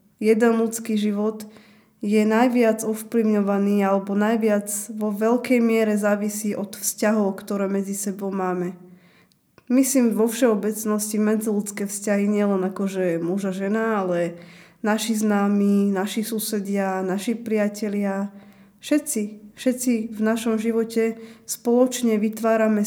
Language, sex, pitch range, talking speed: Slovak, female, 200-225 Hz, 115 wpm